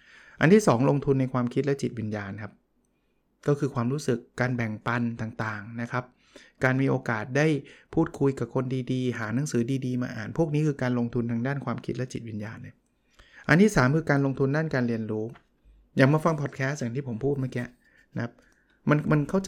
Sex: male